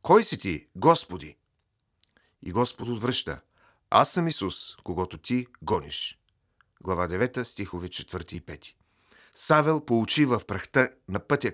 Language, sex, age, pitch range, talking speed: Bulgarian, male, 40-59, 95-130 Hz, 130 wpm